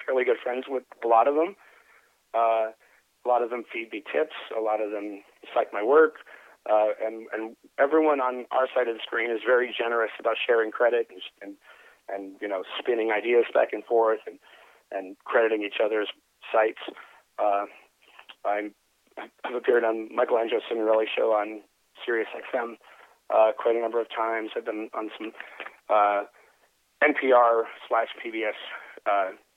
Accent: American